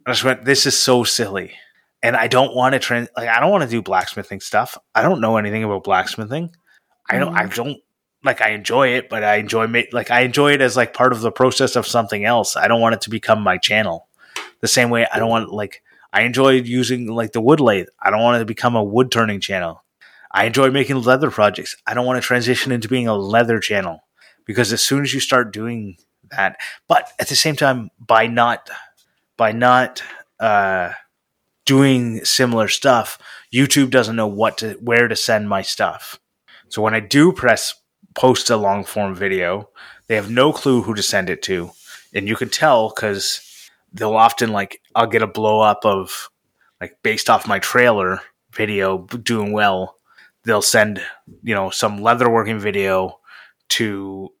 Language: English